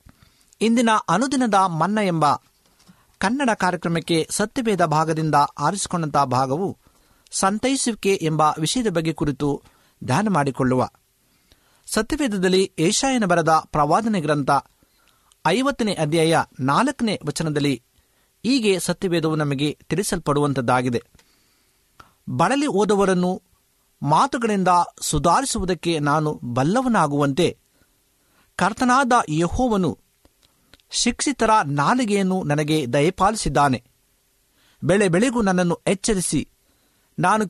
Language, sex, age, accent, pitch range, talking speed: Kannada, male, 50-69, native, 155-215 Hz, 75 wpm